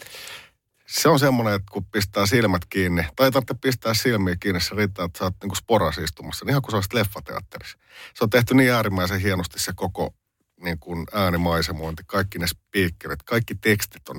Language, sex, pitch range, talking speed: Finnish, male, 85-100 Hz, 175 wpm